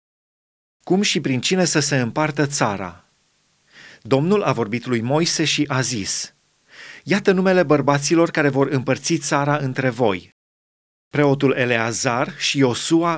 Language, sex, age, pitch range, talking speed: Romanian, male, 30-49, 130-160 Hz, 130 wpm